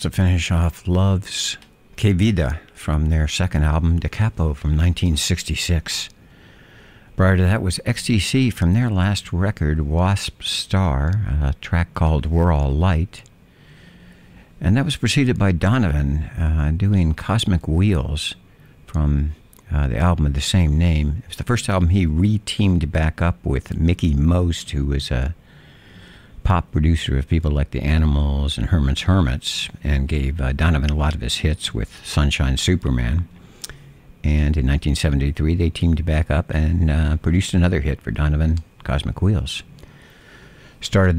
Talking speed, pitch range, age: 150 wpm, 75-95 Hz, 60-79